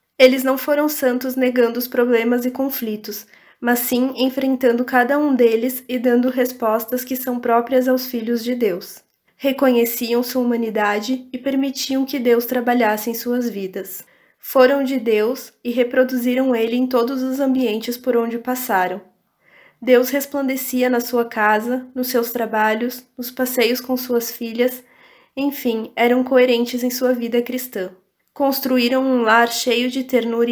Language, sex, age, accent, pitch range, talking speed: Portuguese, female, 20-39, Brazilian, 235-255 Hz, 145 wpm